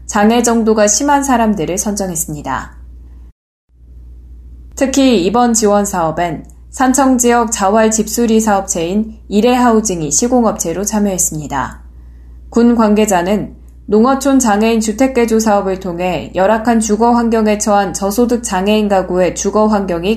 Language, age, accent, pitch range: Korean, 10-29, native, 170-230 Hz